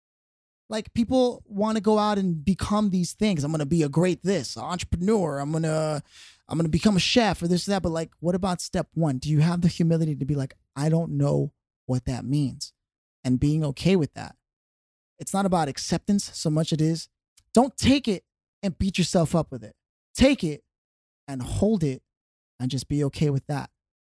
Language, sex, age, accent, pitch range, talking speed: English, male, 20-39, American, 140-195 Hz, 210 wpm